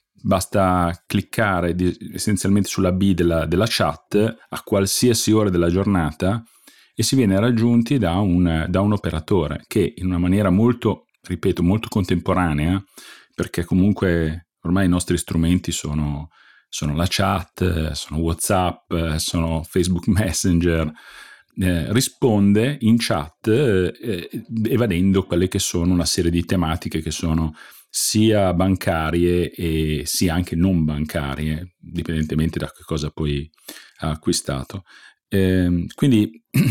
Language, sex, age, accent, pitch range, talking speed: Italian, male, 40-59, native, 85-110 Hz, 125 wpm